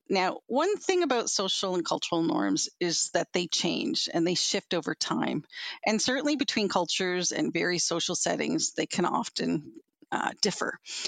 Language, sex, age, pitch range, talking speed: English, female, 40-59, 185-245 Hz, 165 wpm